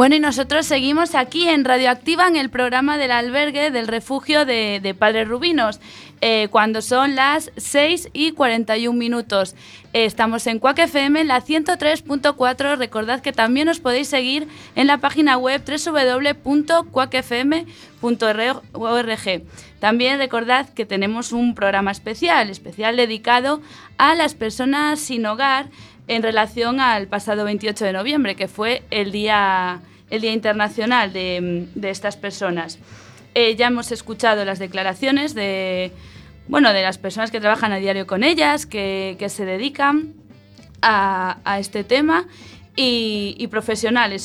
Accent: Spanish